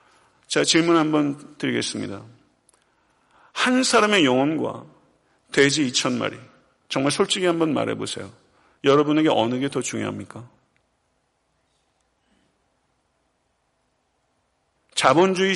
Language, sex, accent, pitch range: Korean, male, native, 150-205 Hz